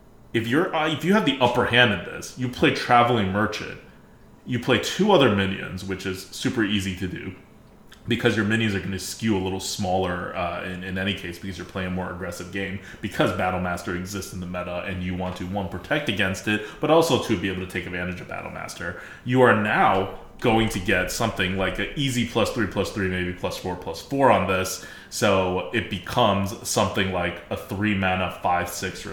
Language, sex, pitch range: English, male, 95-115 Hz